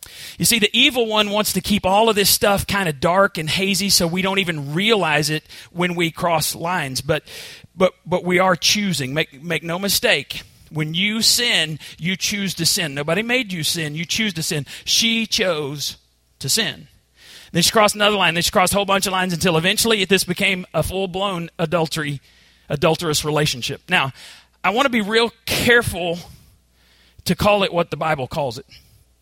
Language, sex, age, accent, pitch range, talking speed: English, male, 40-59, American, 160-215 Hz, 190 wpm